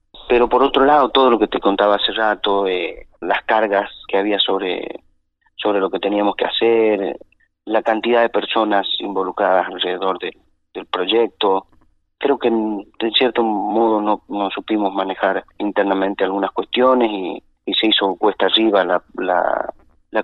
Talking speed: 160 wpm